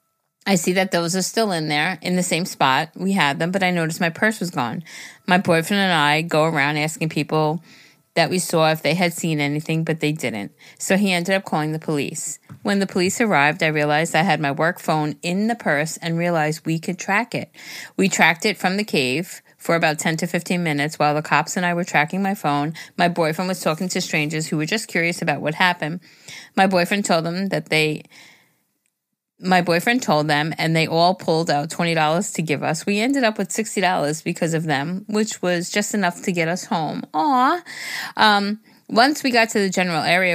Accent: American